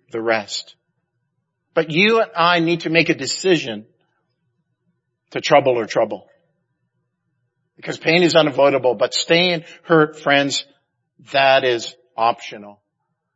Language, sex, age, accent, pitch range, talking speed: English, male, 50-69, American, 150-195 Hz, 115 wpm